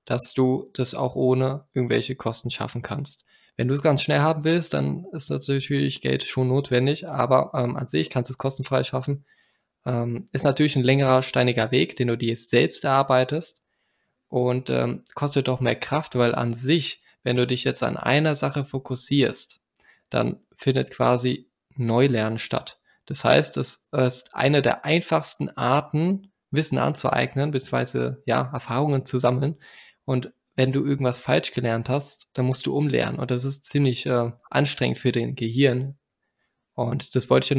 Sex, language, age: male, German, 20-39